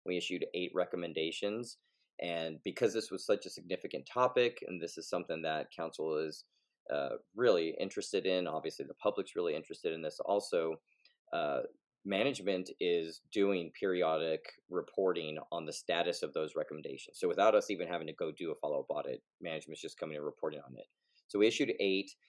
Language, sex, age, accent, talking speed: English, male, 30-49, American, 175 wpm